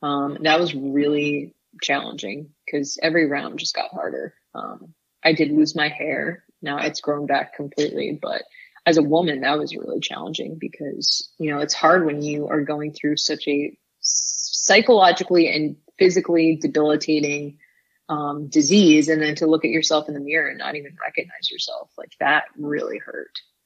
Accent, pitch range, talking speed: American, 150-170 Hz, 165 wpm